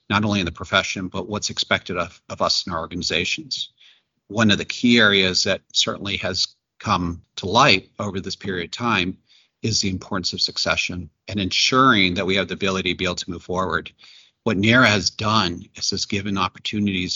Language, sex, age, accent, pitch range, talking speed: English, male, 40-59, American, 95-110 Hz, 195 wpm